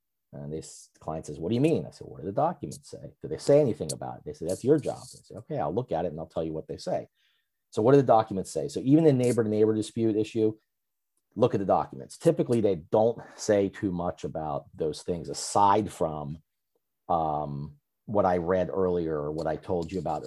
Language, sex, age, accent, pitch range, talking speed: English, male, 40-59, American, 80-105 Hz, 230 wpm